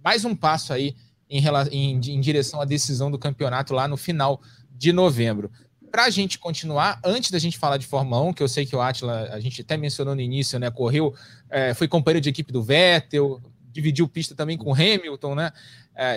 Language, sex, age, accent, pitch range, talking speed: Portuguese, male, 20-39, Brazilian, 130-160 Hz, 215 wpm